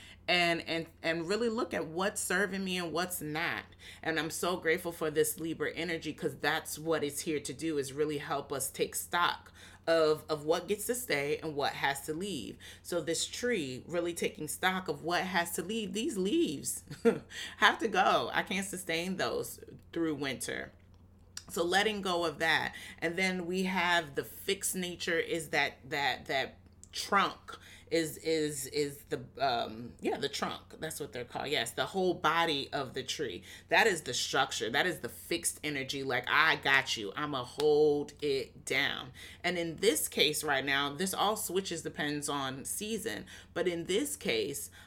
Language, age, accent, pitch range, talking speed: English, 30-49, American, 145-175 Hz, 180 wpm